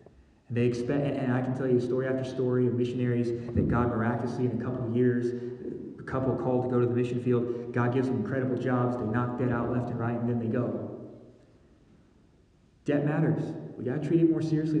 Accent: American